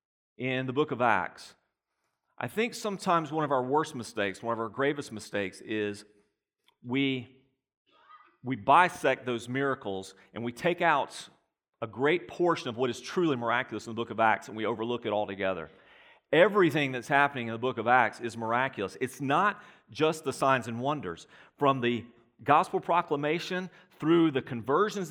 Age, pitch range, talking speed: 40-59, 125-175 Hz, 165 wpm